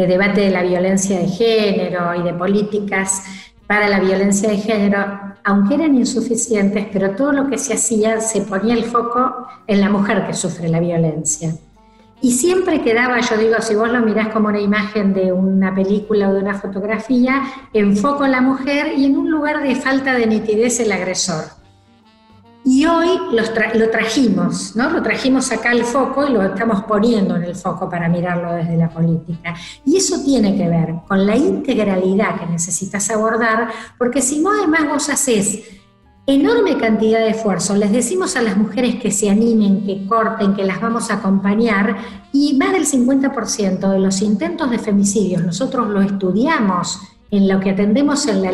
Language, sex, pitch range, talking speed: Spanish, female, 195-245 Hz, 180 wpm